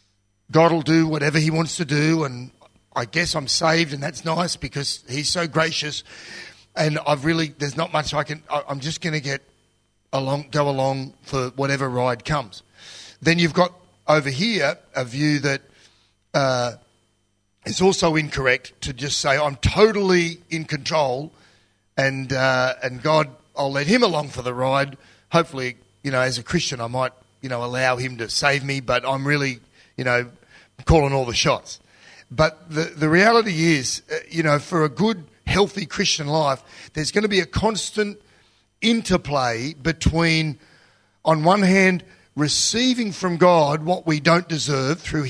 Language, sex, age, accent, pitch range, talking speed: English, male, 40-59, Australian, 130-170 Hz, 170 wpm